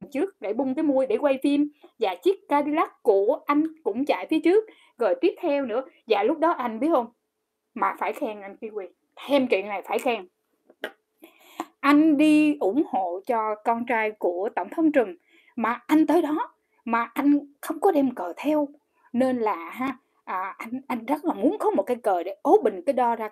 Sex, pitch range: female, 245-320 Hz